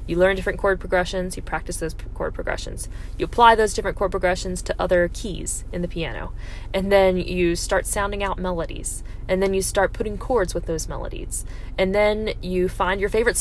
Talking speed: 195 wpm